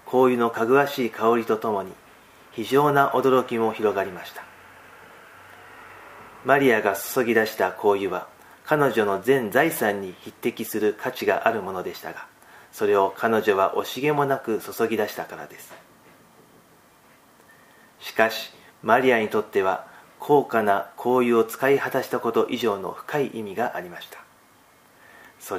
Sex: male